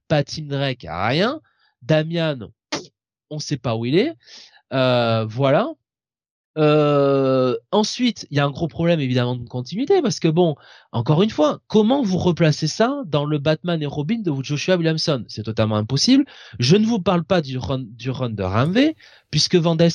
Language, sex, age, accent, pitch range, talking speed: French, male, 20-39, French, 125-170 Hz, 175 wpm